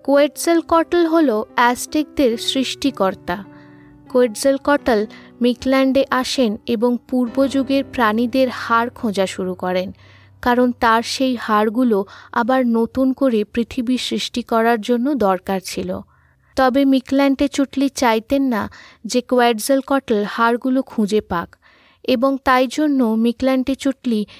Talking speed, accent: 115 wpm, native